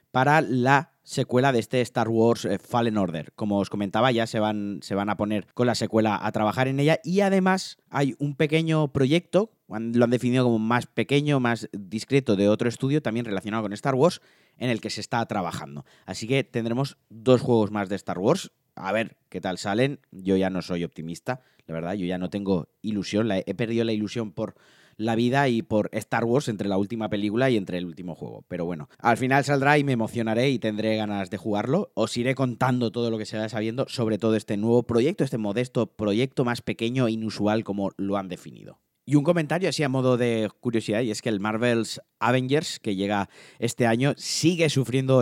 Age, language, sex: 30-49, Spanish, male